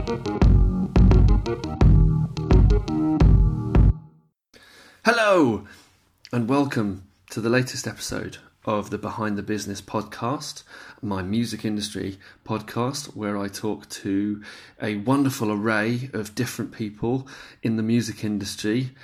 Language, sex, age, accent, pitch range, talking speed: English, male, 30-49, British, 105-130 Hz, 100 wpm